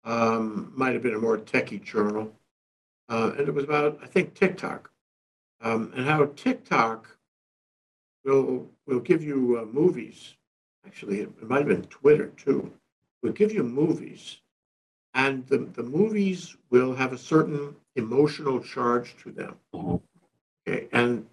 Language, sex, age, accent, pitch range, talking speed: English, male, 60-79, American, 125-170 Hz, 145 wpm